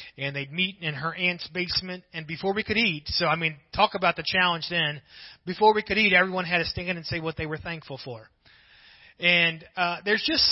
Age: 30-49